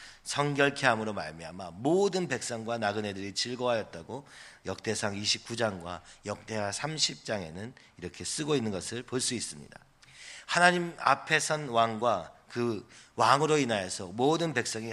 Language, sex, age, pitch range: Korean, male, 40-59, 110-140 Hz